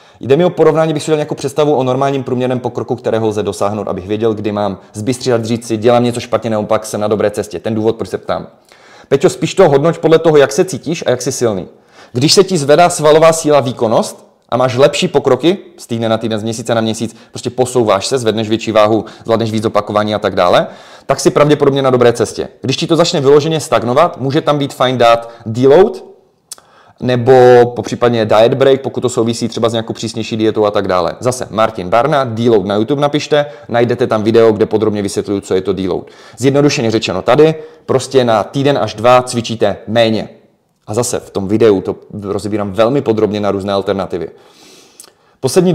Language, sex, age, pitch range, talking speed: Czech, male, 30-49, 110-145 Hz, 200 wpm